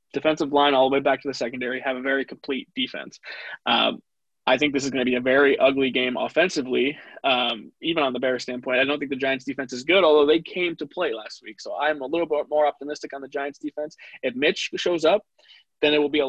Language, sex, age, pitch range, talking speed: English, male, 20-39, 130-150 Hz, 250 wpm